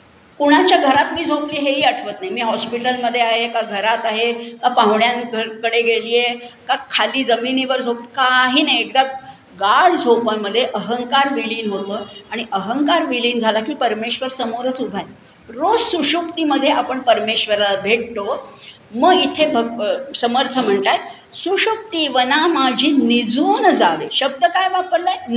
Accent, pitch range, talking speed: native, 225-285 Hz, 140 wpm